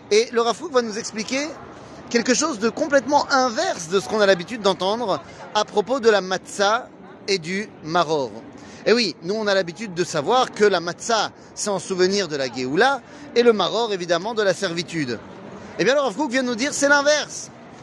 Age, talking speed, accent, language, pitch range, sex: 30-49, 200 wpm, French, French, 175-235 Hz, male